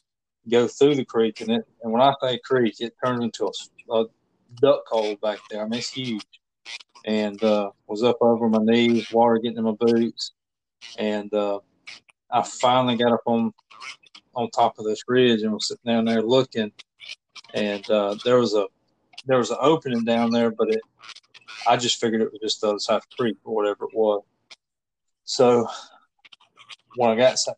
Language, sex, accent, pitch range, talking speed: English, male, American, 110-120 Hz, 190 wpm